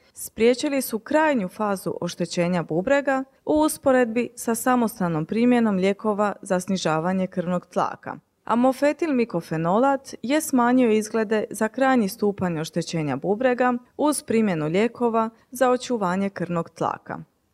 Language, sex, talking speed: Croatian, female, 110 wpm